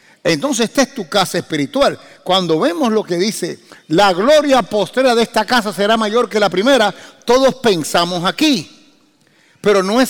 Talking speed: 165 wpm